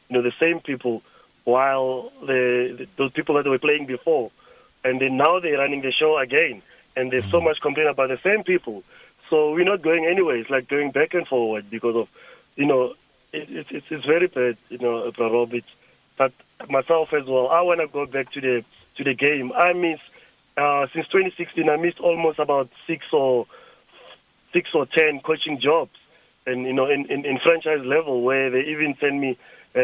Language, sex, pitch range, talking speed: English, male, 130-155 Hz, 205 wpm